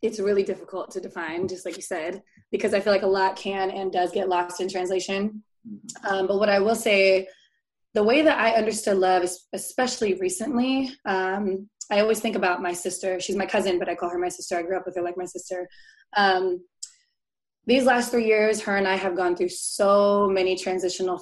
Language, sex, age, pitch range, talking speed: English, female, 20-39, 185-210 Hz, 210 wpm